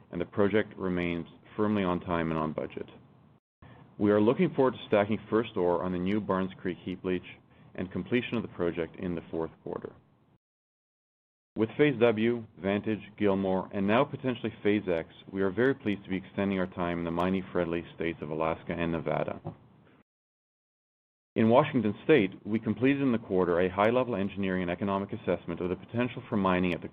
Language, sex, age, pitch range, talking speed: English, male, 40-59, 85-105 Hz, 185 wpm